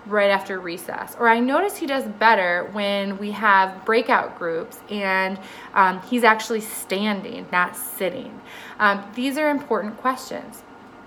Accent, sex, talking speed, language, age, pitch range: American, female, 140 wpm, English, 30-49, 200-245 Hz